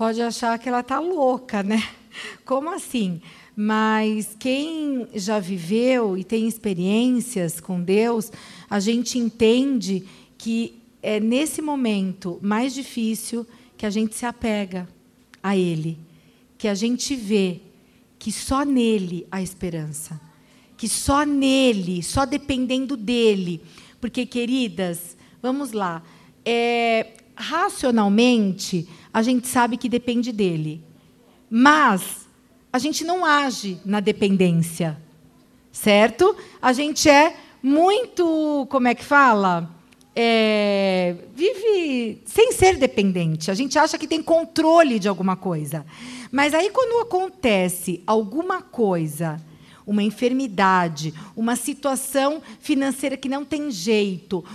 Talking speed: 115 wpm